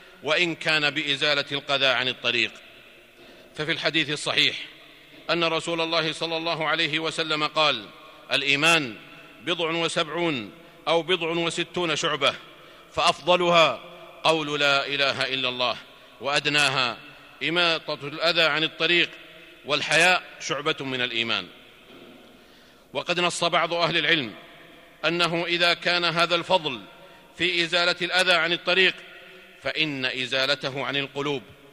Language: Arabic